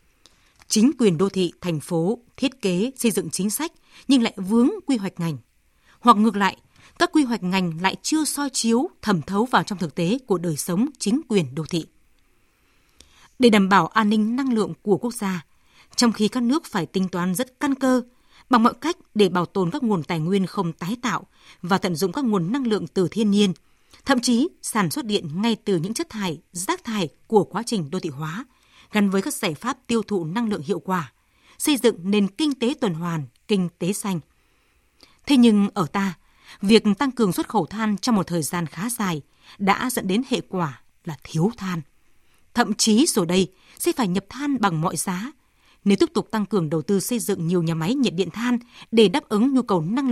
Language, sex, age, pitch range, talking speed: Vietnamese, female, 20-39, 180-240 Hz, 215 wpm